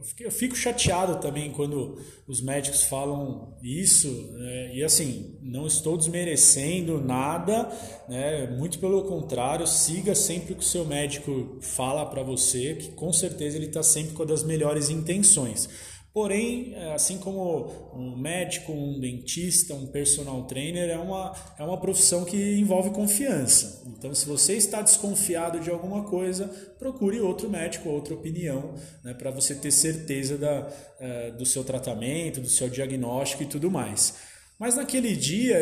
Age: 20-39